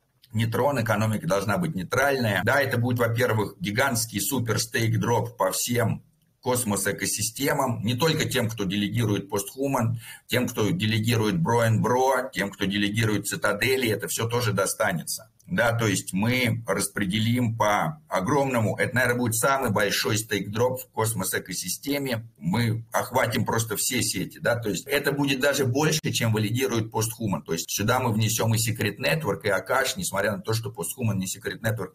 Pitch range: 110-135 Hz